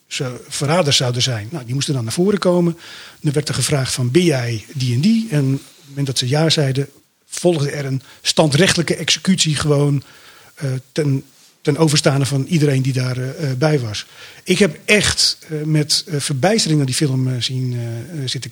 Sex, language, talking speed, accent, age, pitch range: male, Dutch, 190 wpm, Dutch, 40-59, 140-170 Hz